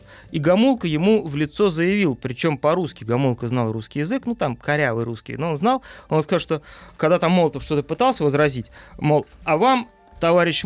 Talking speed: 175 wpm